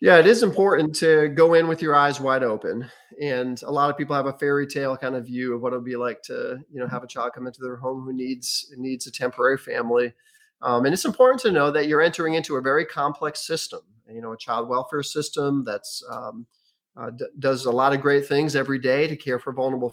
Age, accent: 30-49, American